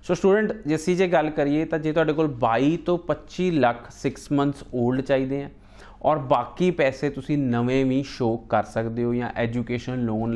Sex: male